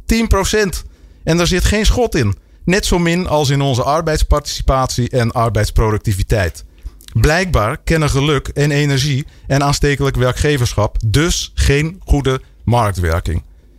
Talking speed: 120 wpm